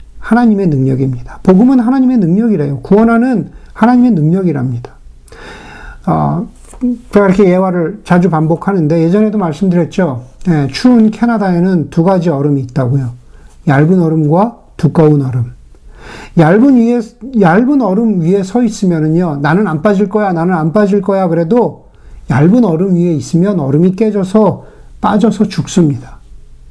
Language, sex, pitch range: Korean, male, 155-230 Hz